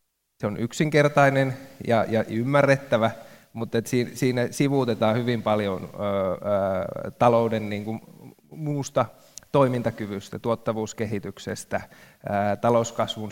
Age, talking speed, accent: 20-39, 80 wpm, native